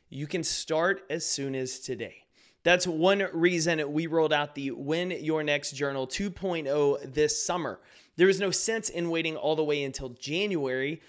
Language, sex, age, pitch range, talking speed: English, male, 30-49, 140-175 Hz, 175 wpm